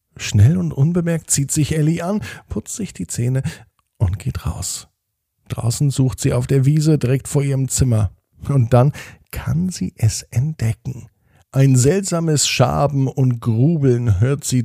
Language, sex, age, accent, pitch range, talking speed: German, male, 50-69, German, 110-145 Hz, 150 wpm